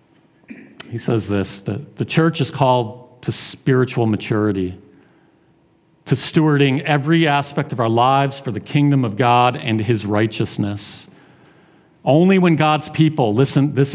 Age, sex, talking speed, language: 40-59, male, 140 wpm, English